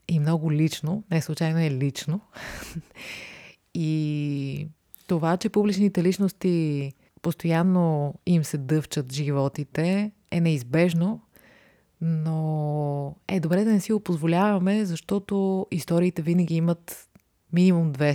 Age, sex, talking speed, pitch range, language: 20-39, female, 105 wpm, 145-180 Hz, Bulgarian